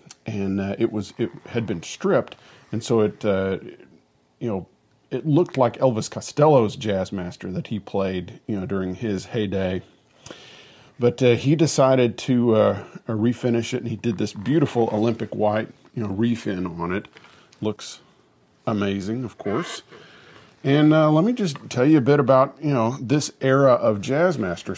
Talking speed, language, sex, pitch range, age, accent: 170 wpm, English, male, 105-130 Hz, 40-59, American